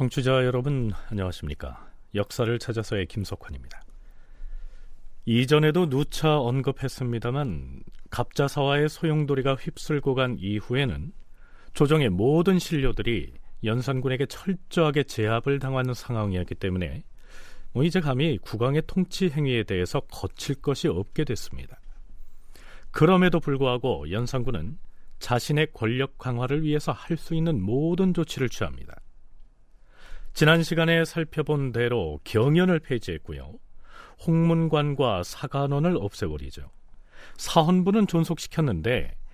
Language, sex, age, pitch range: Korean, male, 40-59, 105-155 Hz